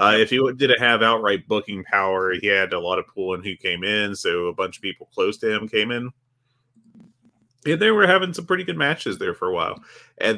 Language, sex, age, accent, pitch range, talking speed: English, male, 30-49, American, 95-135 Hz, 235 wpm